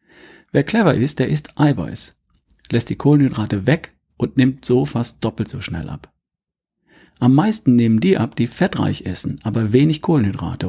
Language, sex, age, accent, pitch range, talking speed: German, male, 40-59, German, 110-145 Hz, 165 wpm